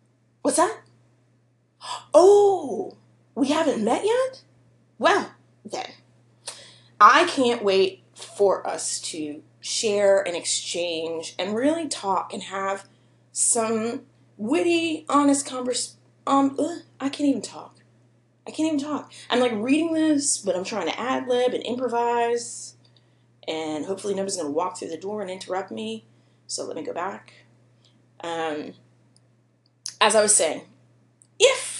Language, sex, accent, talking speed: English, female, American, 135 wpm